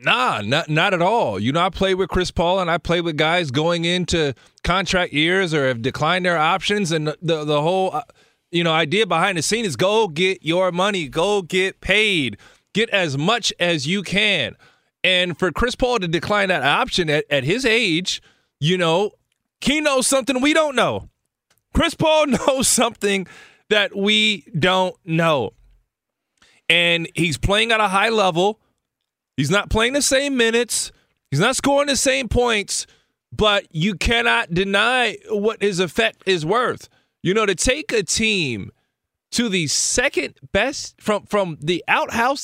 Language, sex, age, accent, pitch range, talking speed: English, male, 30-49, American, 175-235 Hz, 170 wpm